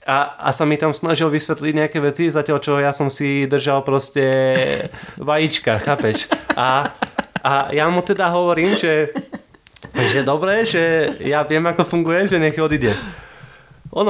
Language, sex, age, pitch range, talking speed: Slovak, male, 20-39, 120-165 Hz, 155 wpm